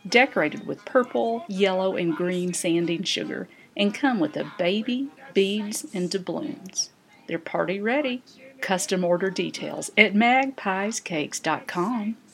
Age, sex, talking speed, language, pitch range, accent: 50-69, female, 115 wpm, English, 180-235 Hz, American